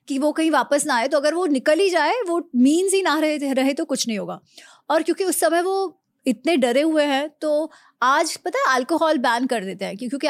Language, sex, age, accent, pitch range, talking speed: Hindi, female, 30-49, native, 240-310 Hz, 240 wpm